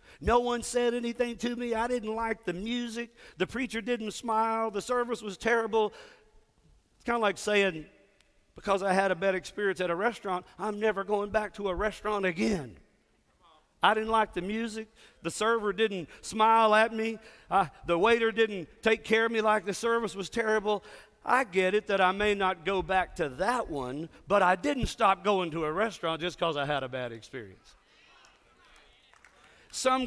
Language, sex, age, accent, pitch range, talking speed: English, male, 50-69, American, 165-220 Hz, 185 wpm